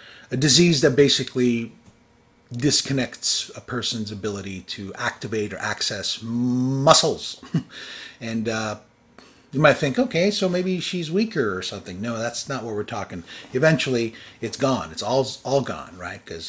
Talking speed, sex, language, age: 145 wpm, male, English, 30-49